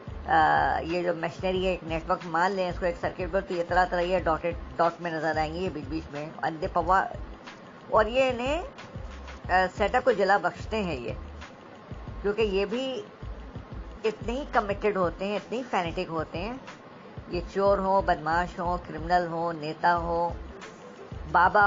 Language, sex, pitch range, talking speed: Urdu, male, 170-205 Hz, 170 wpm